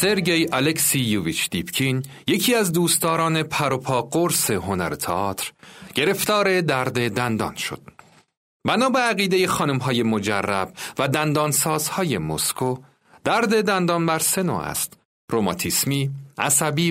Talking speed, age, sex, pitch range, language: 105 wpm, 40-59, male, 120-175 Hz, Persian